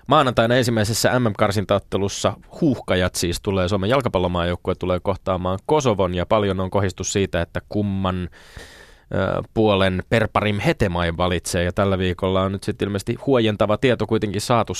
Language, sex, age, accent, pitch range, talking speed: Finnish, male, 20-39, native, 95-125 Hz, 140 wpm